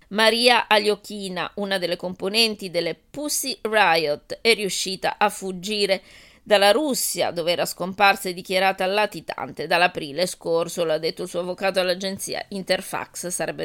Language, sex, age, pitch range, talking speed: Italian, female, 20-39, 180-205 Hz, 130 wpm